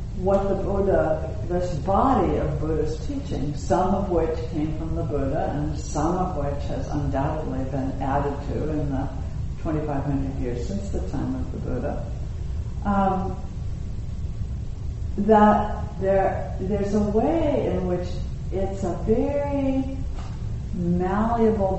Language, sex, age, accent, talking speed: English, female, 60-79, American, 130 wpm